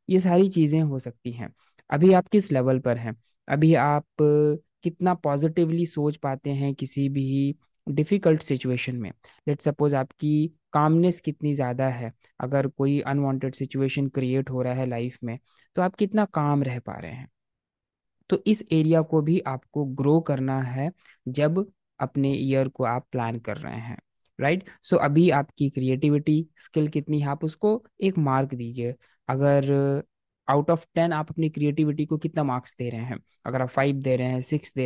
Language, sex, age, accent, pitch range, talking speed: Hindi, male, 20-39, native, 130-160 Hz, 175 wpm